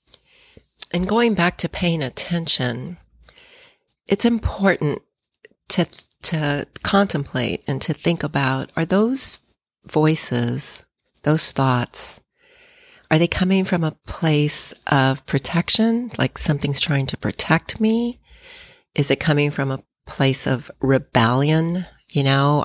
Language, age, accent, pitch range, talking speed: English, 40-59, American, 135-165 Hz, 115 wpm